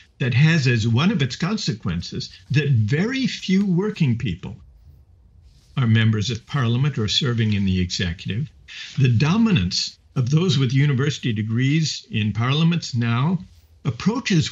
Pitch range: 105-155 Hz